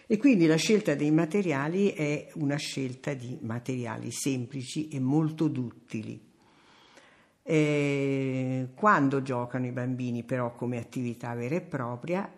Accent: native